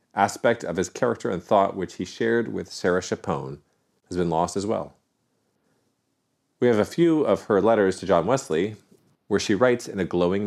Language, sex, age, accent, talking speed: English, male, 40-59, American, 190 wpm